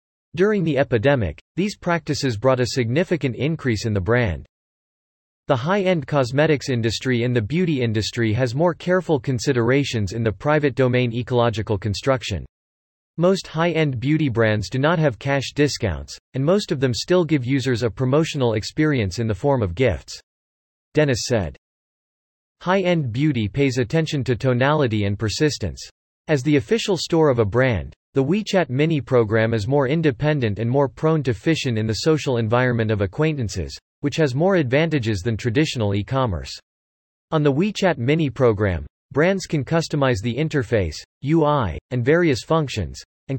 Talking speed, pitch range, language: 155 wpm, 110-155 Hz, English